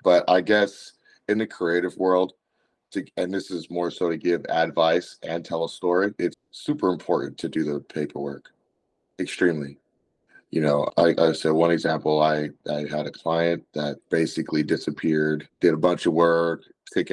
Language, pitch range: English, 75-85 Hz